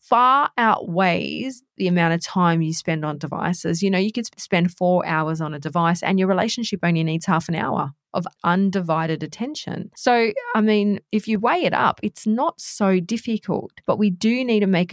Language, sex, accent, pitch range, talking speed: English, female, Australian, 170-210 Hz, 195 wpm